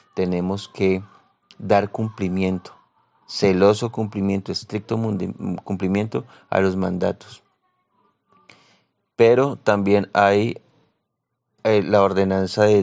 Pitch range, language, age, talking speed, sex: 95-110 Hz, Spanish, 30-49, 80 wpm, male